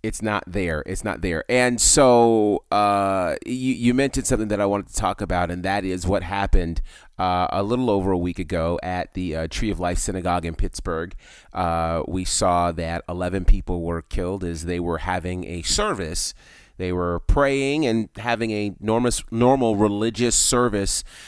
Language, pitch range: English, 90-115 Hz